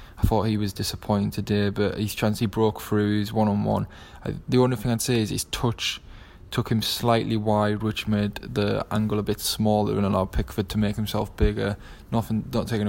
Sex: male